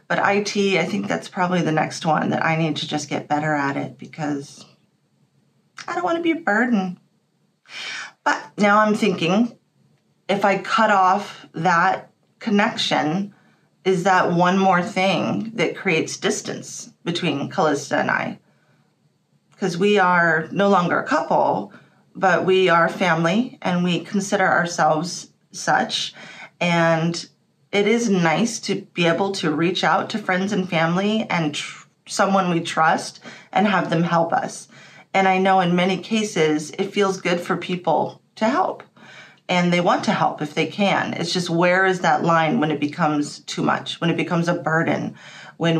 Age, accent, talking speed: 30-49, American, 160 wpm